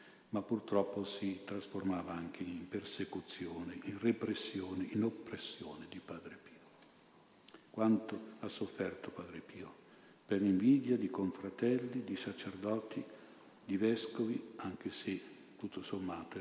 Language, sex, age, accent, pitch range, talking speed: Italian, male, 50-69, native, 100-110 Hz, 115 wpm